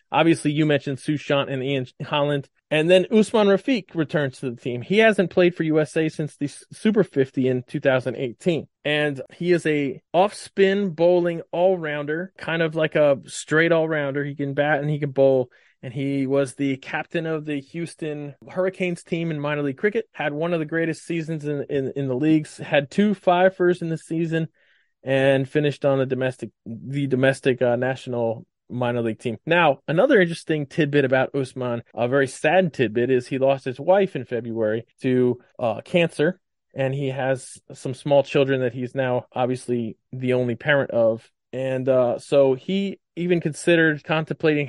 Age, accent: 20-39, American